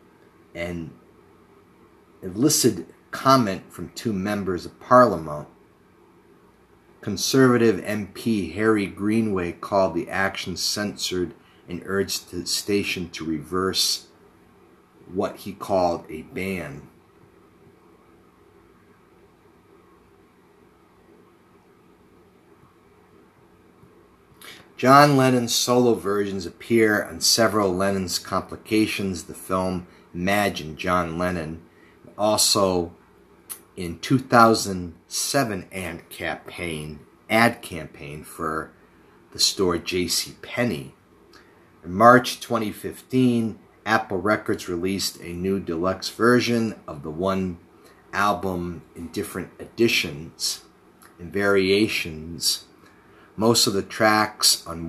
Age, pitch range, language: 30-49, 85-110 Hz, English